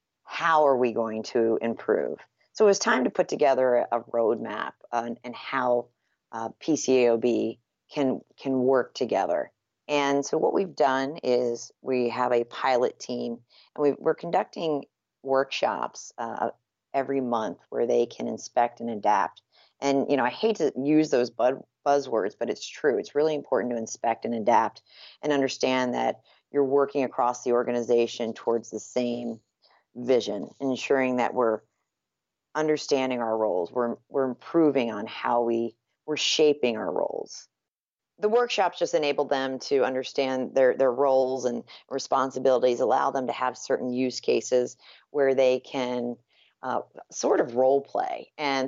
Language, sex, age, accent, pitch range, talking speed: English, female, 40-59, American, 120-140 Hz, 155 wpm